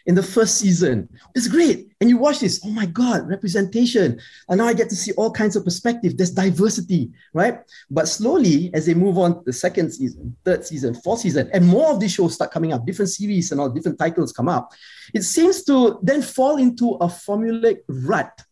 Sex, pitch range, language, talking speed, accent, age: male, 160-225 Hz, English, 215 wpm, Malaysian, 30-49